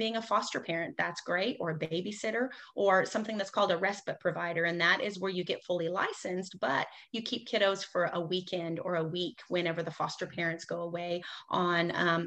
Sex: female